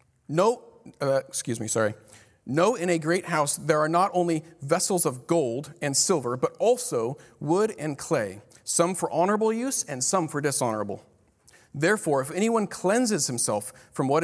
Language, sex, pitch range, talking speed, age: English, male, 130-180 Hz, 165 wpm, 40-59